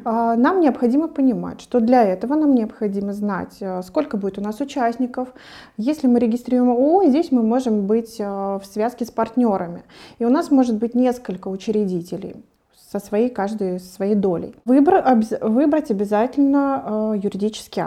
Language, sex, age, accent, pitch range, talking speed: Russian, female, 20-39, native, 205-255 Hz, 145 wpm